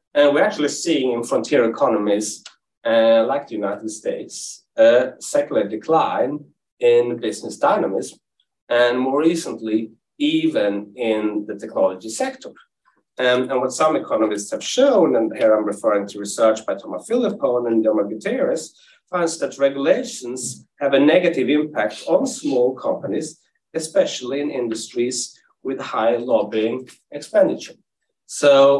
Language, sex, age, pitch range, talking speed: English, male, 40-59, 110-170 Hz, 130 wpm